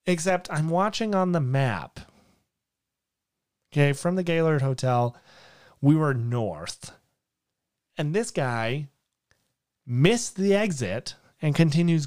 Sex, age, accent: male, 30-49, American